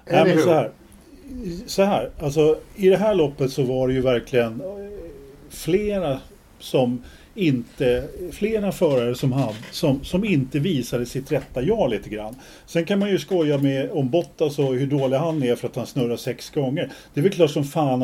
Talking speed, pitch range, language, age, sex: 190 wpm, 125-170 Hz, Swedish, 40-59, male